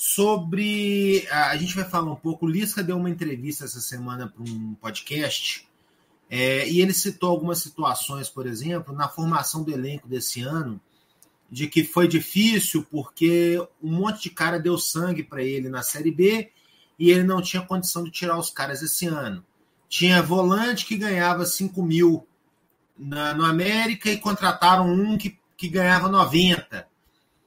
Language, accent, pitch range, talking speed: Portuguese, Brazilian, 155-205 Hz, 160 wpm